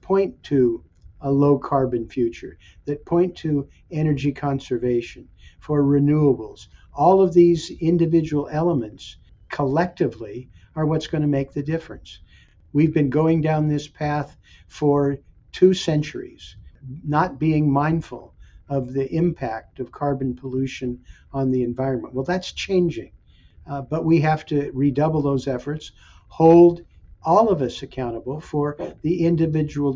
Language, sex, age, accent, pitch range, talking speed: English, male, 50-69, American, 130-160 Hz, 130 wpm